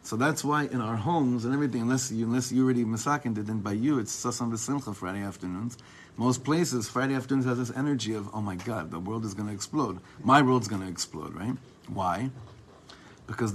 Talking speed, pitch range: 215 wpm, 110-140 Hz